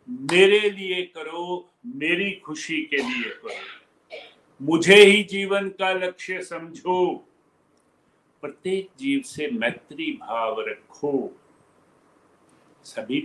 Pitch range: 135-200 Hz